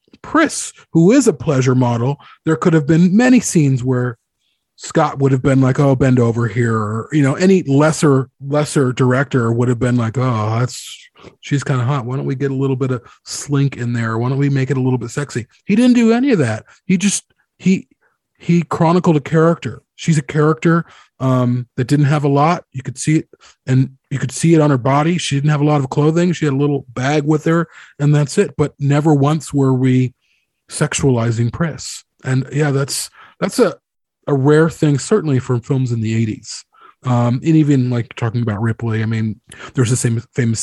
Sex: male